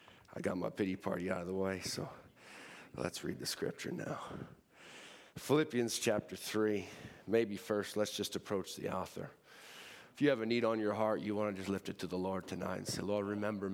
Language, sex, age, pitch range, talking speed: English, male, 40-59, 100-120 Hz, 205 wpm